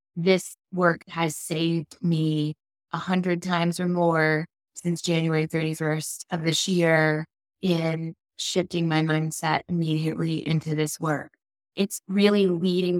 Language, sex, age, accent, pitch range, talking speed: English, female, 20-39, American, 165-180 Hz, 125 wpm